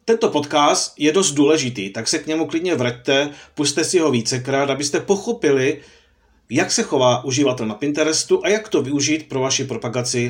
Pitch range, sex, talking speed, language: 120-160 Hz, male, 175 wpm, Czech